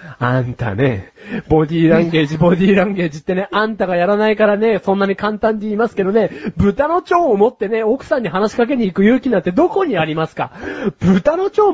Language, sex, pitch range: Japanese, male, 170-265 Hz